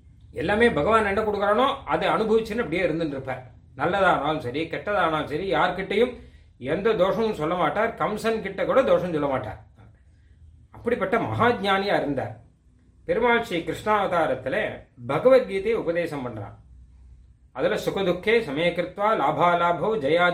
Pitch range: 145-215 Hz